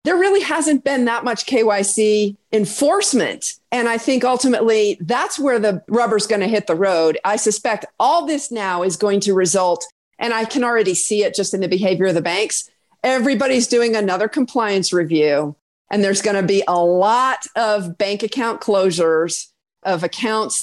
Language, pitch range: English, 190-240 Hz